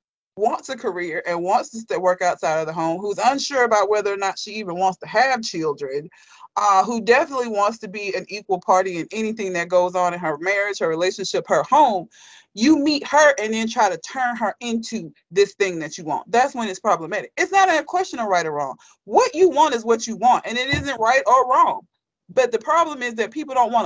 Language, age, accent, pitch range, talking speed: English, 30-49, American, 200-300 Hz, 230 wpm